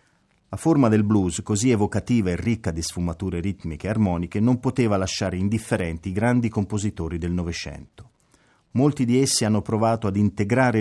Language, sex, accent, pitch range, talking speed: Italian, male, native, 90-115 Hz, 160 wpm